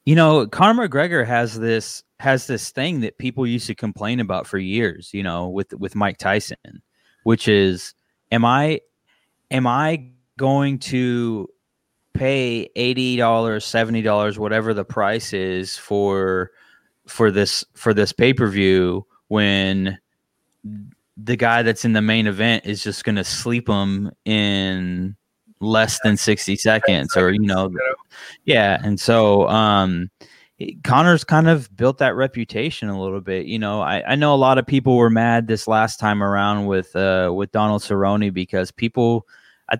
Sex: male